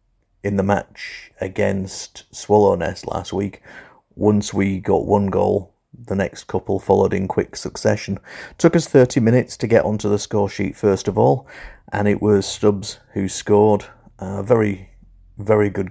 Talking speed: 160 wpm